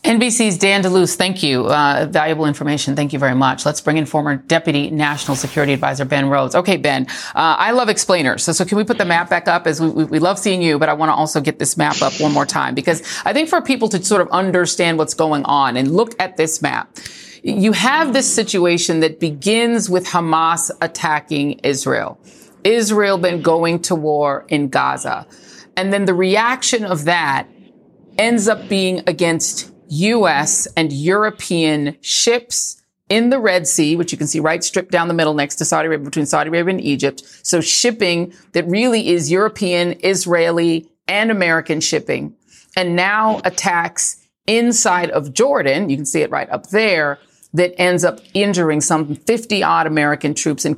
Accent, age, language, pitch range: American, 40-59, English, 155-195 Hz